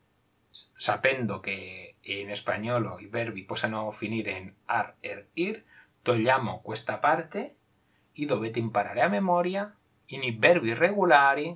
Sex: male